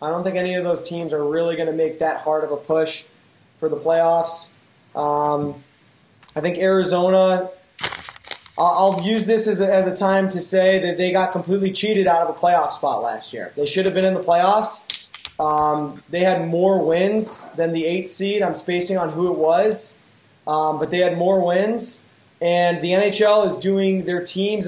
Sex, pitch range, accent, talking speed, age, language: male, 160-190 Hz, American, 195 wpm, 20-39, English